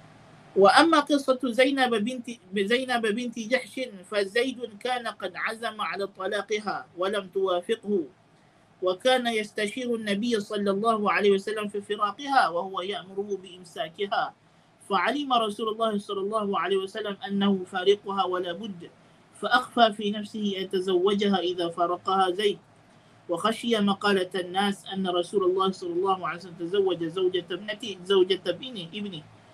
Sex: male